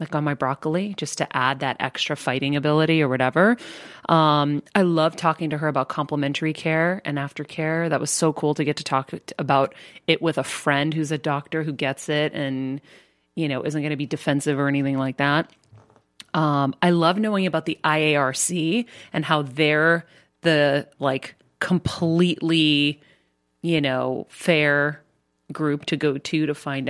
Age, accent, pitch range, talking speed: 30-49, American, 140-165 Hz, 170 wpm